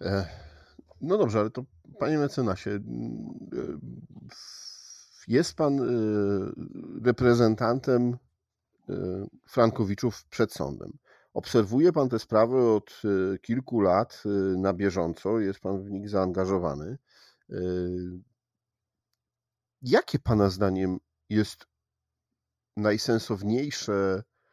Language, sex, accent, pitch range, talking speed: Polish, male, native, 95-120 Hz, 75 wpm